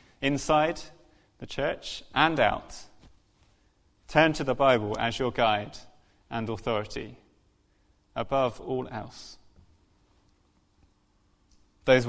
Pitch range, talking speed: 105-125 Hz, 90 wpm